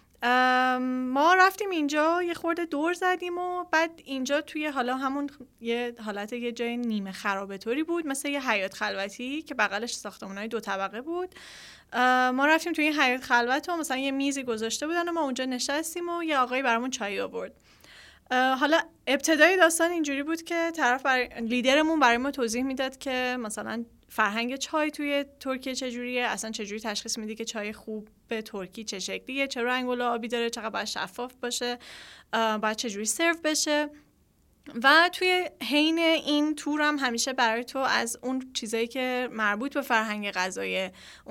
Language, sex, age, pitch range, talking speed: Persian, female, 10-29, 225-290 Hz, 165 wpm